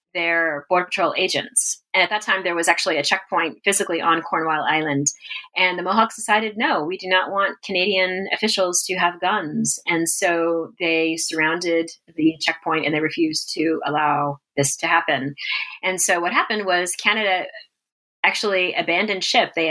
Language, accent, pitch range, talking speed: English, American, 165-200 Hz, 165 wpm